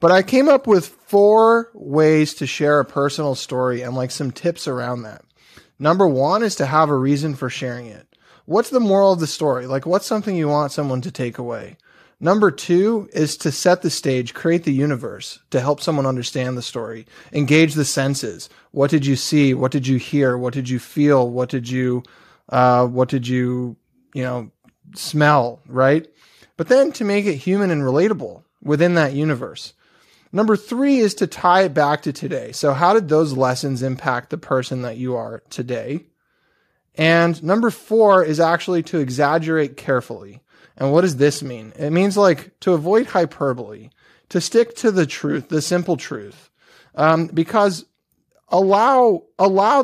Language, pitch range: English, 130-185 Hz